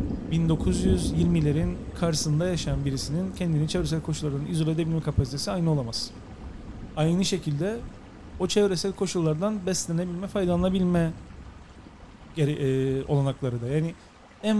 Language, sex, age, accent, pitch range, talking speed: English, male, 40-59, Turkish, 135-185 Hz, 105 wpm